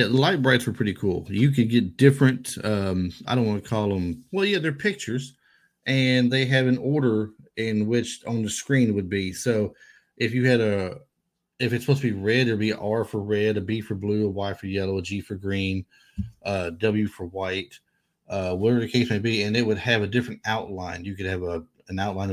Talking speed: 225 wpm